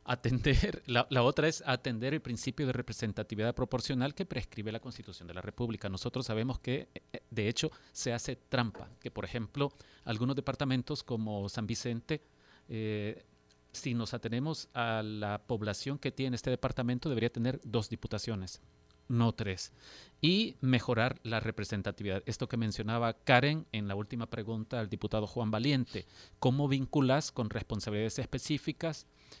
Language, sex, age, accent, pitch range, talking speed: Spanish, male, 40-59, Mexican, 110-135 Hz, 145 wpm